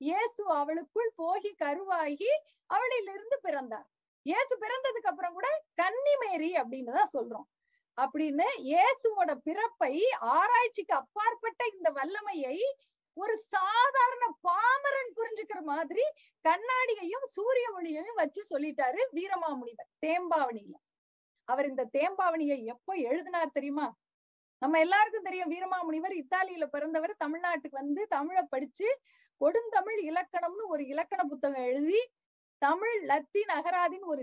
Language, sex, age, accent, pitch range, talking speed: Tamil, female, 20-39, native, 300-410 Hz, 85 wpm